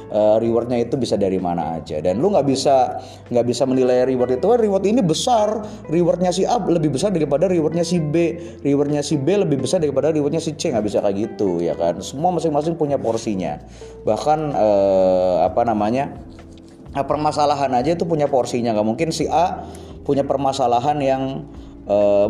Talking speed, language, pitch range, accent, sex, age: 170 wpm, Indonesian, 100-150 Hz, native, male, 20-39